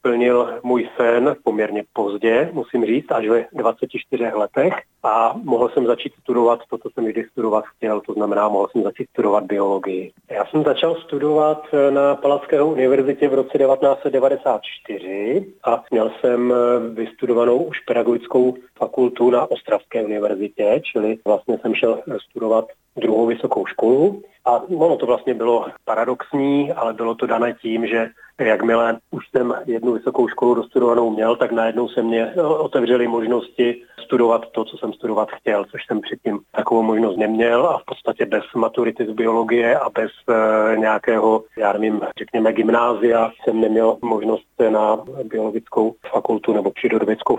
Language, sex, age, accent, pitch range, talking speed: Czech, male, 40-59, native, 110-130 Hz, 150 wpm